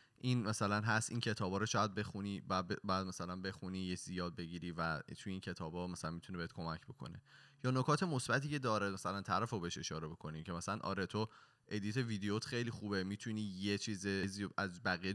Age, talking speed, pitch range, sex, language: 20-39, 200 wpm, 90-115 Hz, male, Persian